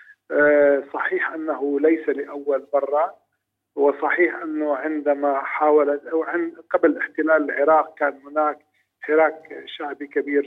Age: 50-69